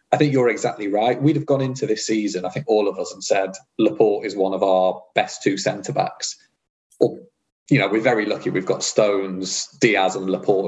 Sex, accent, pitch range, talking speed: male, British, 95-135 Hz, 215 wpm